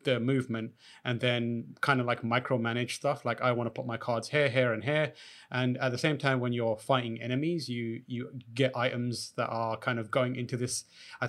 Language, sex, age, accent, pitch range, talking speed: English, male, 30-49, British, 120-135 Hz, 220 wpm